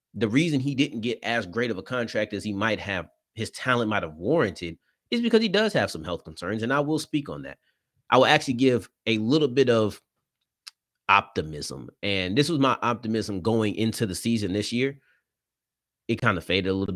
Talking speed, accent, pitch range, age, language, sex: 210 wpm, American, 100-140 Hz, 30-49, English, male